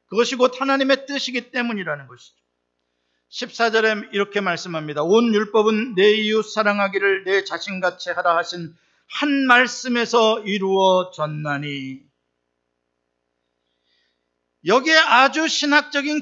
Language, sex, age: Korean, male, 50-69